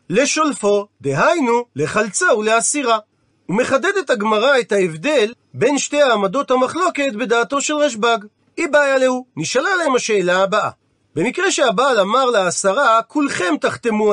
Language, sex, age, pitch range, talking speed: Hebrew, male, 40-59, 205-260 Hz, 120 wpm